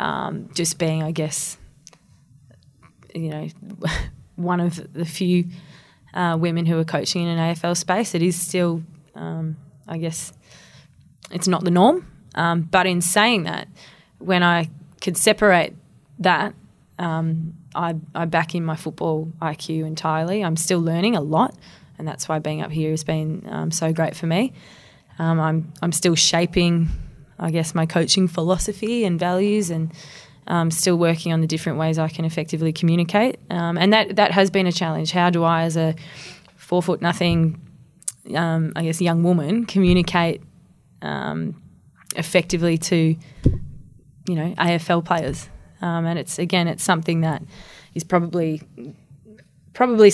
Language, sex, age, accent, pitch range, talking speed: English, female, 20-39, Australian, 160-180 Hz, 155 wpm